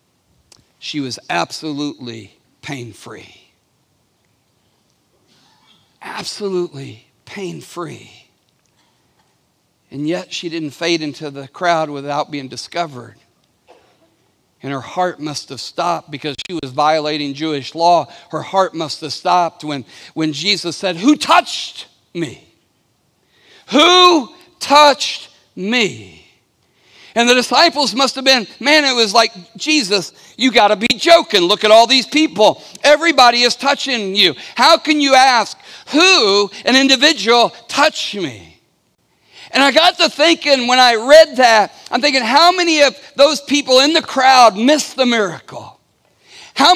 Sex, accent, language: male, American, English